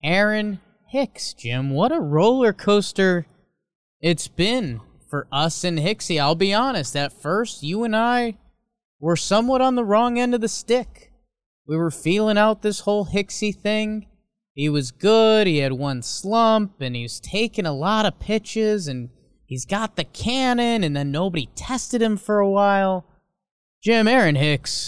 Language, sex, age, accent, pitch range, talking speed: English, male, 20-39, American, 130-205 Hz, 165 wpm